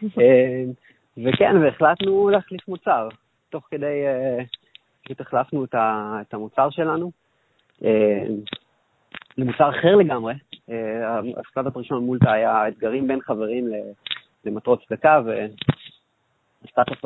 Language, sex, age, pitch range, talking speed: Hebrew, male, 30-49, 115-150 Hz, 85 wpm